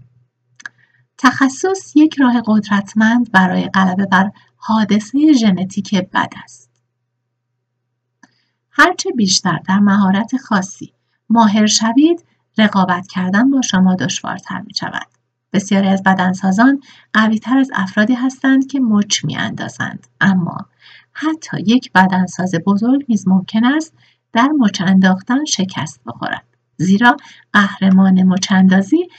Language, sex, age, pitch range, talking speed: Persian, female, 50-69, 185-245 Hz, 110 wpm